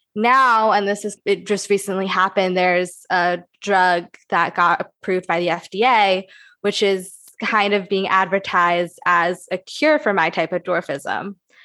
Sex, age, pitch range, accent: female, 20-39, 180-215 Hz, American